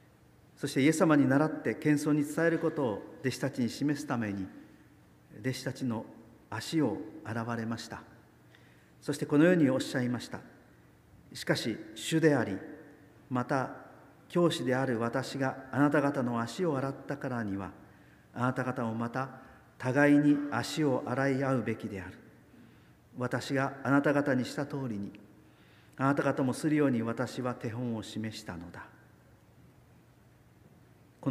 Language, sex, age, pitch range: Japanese, male, 50-69, 115-145 Hz